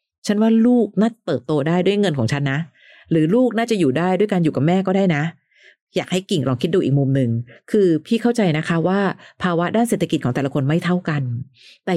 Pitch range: 155-205 Hz